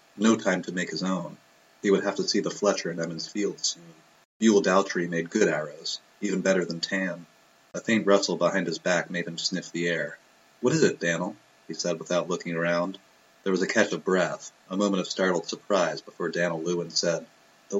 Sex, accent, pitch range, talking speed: male, American, 85-105 Hz, 210 wpm